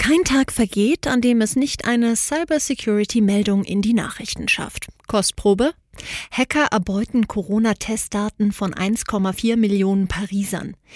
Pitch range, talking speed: 195-250 Hz, 115 wpm